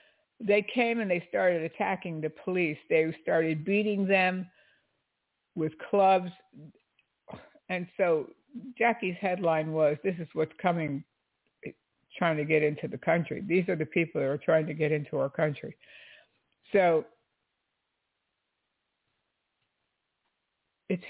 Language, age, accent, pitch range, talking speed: English, 60-79, American, 155-185 Hz, 120 wpm